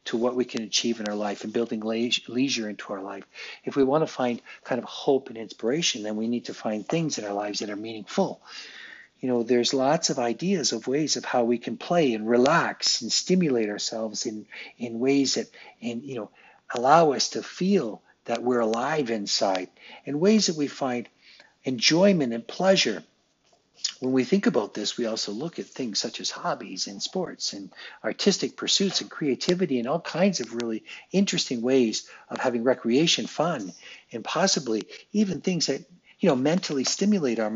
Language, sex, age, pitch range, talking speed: English, male, 50-69, 115-160 Hz, 190 wpm